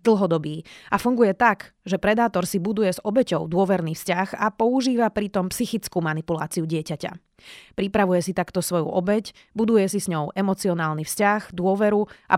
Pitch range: 170-205 Hz